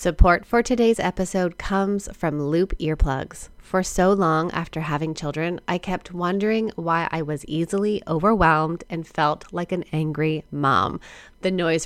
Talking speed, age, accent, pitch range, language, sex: 150 wpm, 20-39, American, 160-205 Hz, English, female